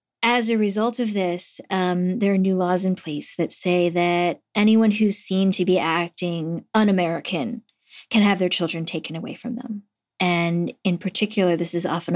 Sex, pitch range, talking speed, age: female, 175-220 Hz, 180 wpm, 20-39